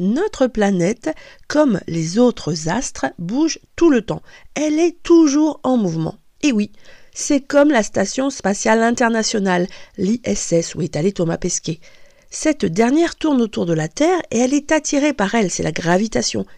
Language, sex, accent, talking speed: French, female, French, 165 wpm